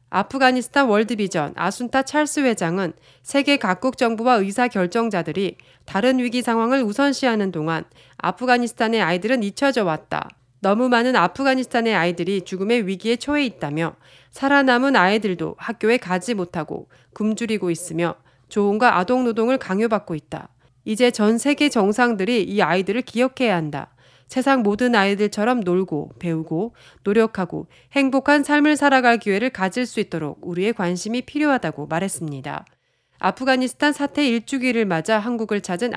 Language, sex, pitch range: Korean, female, 180-250 Hz